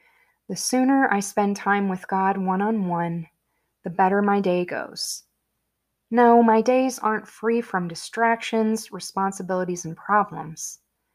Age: 20-39